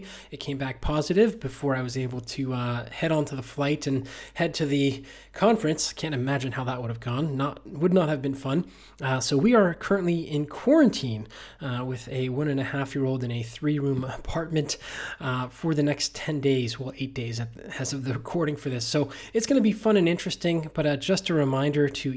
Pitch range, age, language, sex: 130-160 Hz, 20-39, English, male